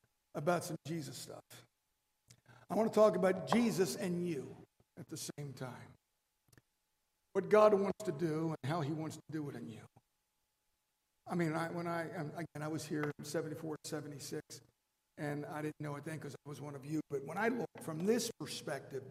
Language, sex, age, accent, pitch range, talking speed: English, male, 60-79, American, 145-180 Hz, 190 wpm